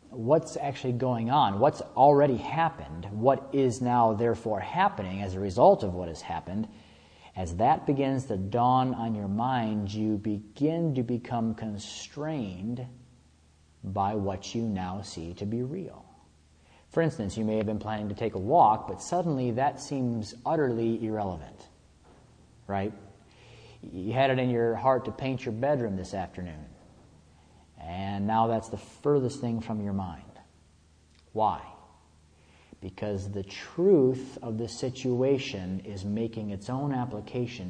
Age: 40-59